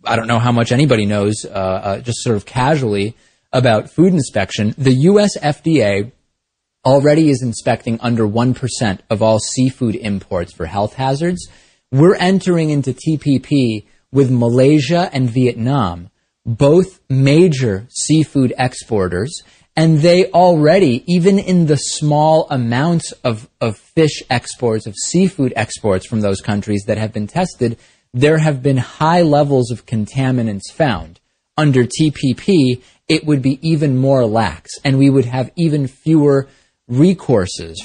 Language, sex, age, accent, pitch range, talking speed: English, male, 30-49, American, 110-150 Hz, 140 wpm